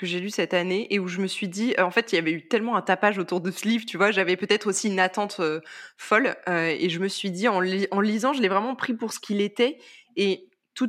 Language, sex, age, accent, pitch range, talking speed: French, female, 20-39, French, 180-230 Hz, 300 wpm